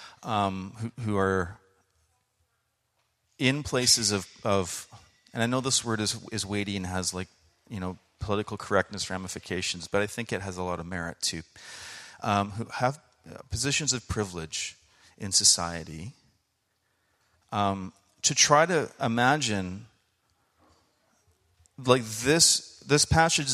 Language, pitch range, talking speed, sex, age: English, 95-120 Hz, 130 wpm, male, 40-59